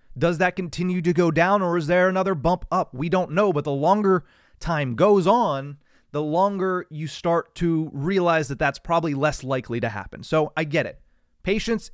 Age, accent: 30-49, American